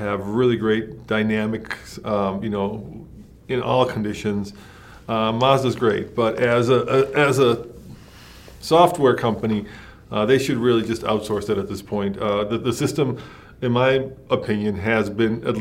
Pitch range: 100-120 Hz